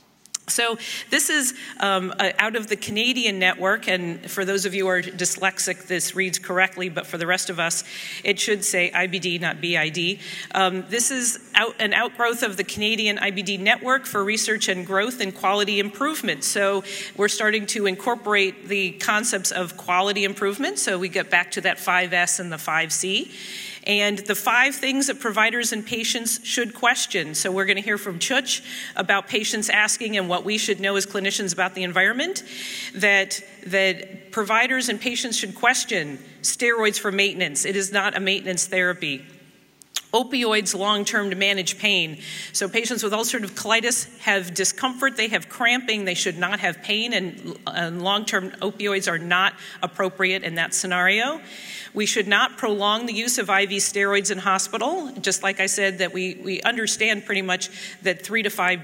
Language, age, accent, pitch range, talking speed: English, 40-59, American, 185-220 Hz, 170 wpm